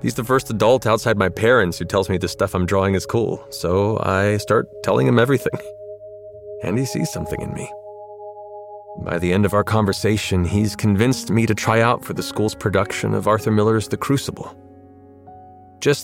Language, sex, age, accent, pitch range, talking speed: English, male, 30-49, American, 85-120 Hz, 185 wpm